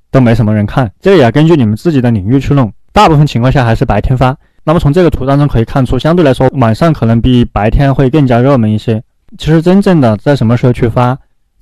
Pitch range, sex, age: 115-150 Hz, male, 20-39